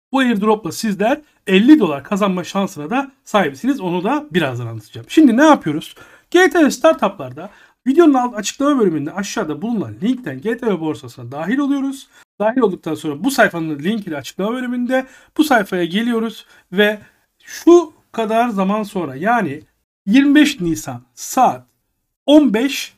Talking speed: 130 wpm